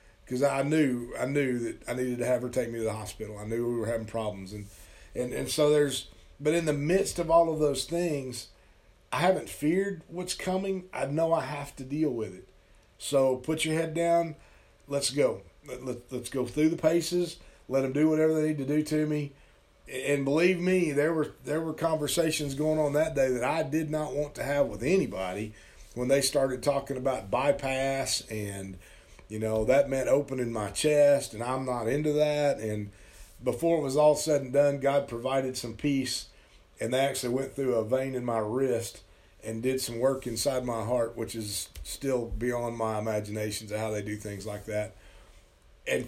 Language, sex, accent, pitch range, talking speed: English, male, American, 110-145 Hz, 205 wpm